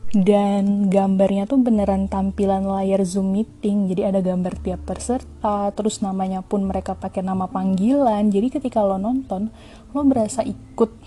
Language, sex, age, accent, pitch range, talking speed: Indonesian, female, 20-39, native, 190-215 Hz, 145 wpm